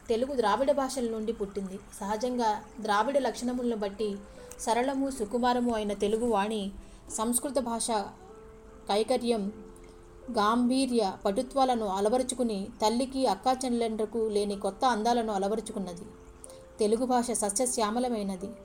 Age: 30-49